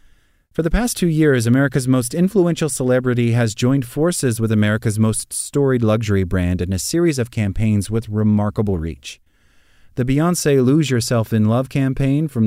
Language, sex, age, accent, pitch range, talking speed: English, male, 30-49, American, 100-130 Hz, 165 wpm